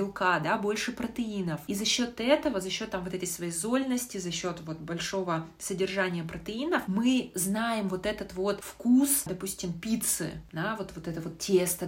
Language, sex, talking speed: Russian, female, 170 wpm